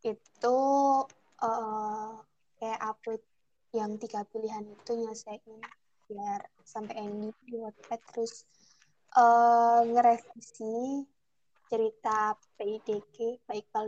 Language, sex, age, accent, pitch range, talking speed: Indonesian, female, 20-39, native, 220-240 Hz, 85 wpm